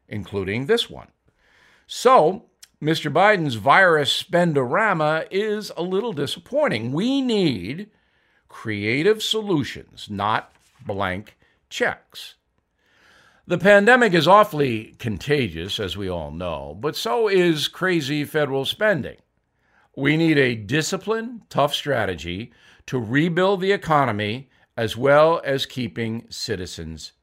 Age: 50-69